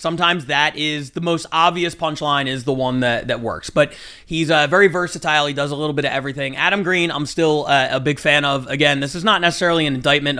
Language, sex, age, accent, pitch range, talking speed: English, male, 30-49, American, 140-185 Hz, 235 wpm